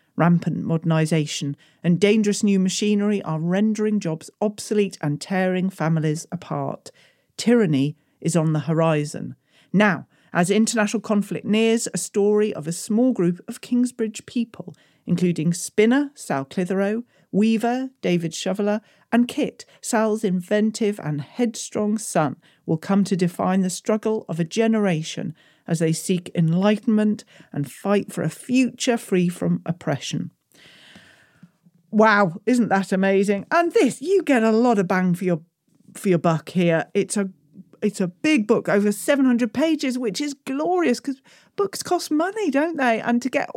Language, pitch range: English, 175-235 Hz